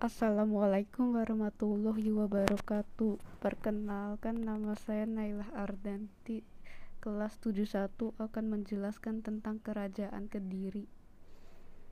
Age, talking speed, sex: 20-39, 75 wpm, female